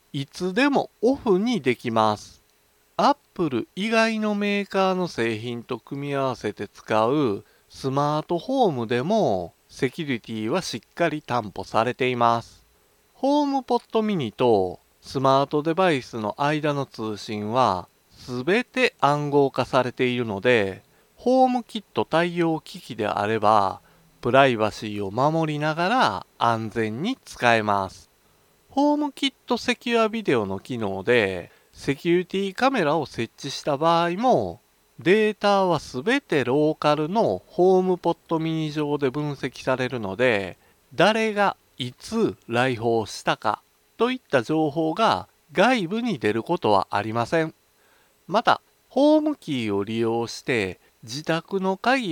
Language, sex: Japanese, male